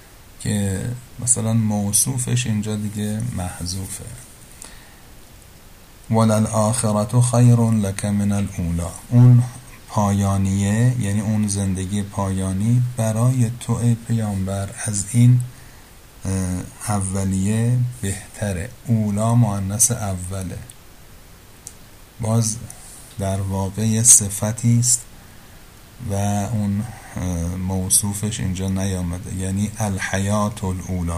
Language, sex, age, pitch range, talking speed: Persian, male, 50-69, 95-110 Hz, 80 wpm